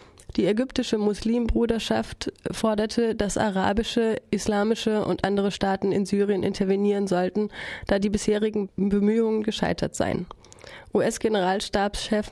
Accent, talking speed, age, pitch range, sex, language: German, 100 wpm, 20-39, 195-215 Hz, female, German